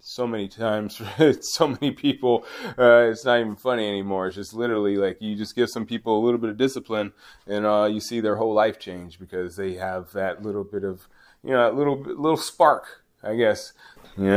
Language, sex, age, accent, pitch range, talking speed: English, male, 20-39, American, 100-125 Hz, 210 wpm